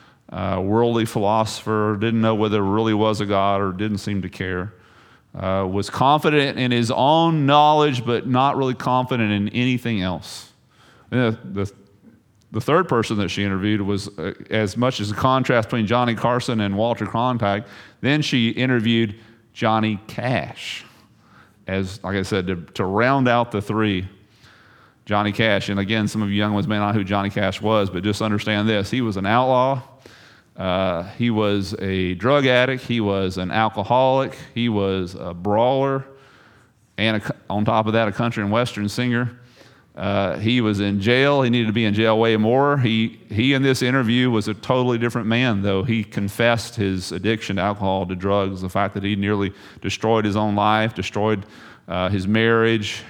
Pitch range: 100-120 Hz